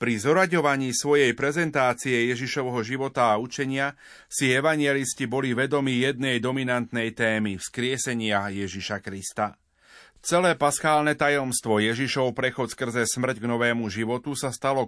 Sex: male